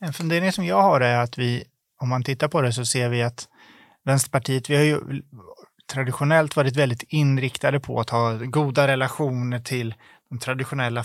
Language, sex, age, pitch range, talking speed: Swedish, male, 20-39, 120-145 Hz, 180 wpm